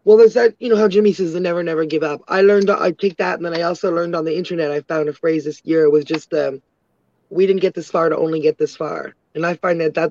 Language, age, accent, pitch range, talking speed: English, 20-39, American, 170-210 Hz, 295 wpm